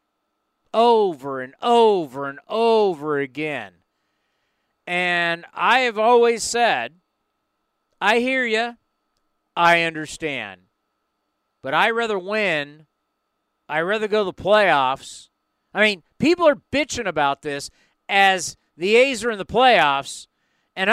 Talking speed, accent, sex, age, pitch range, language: 120 wpm, American, male, 40-59, 145-215 Hz, English